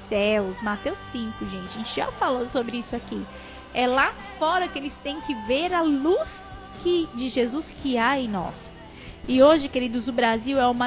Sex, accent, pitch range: female, Brazilian, 250-325 Hz